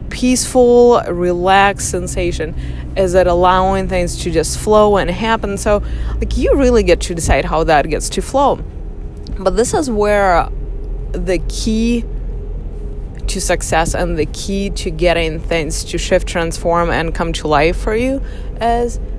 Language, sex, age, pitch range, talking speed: English, female, 20-39, 180-245 Hz, 150 wpm